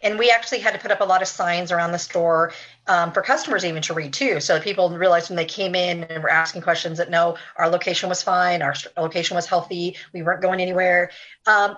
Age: 40-59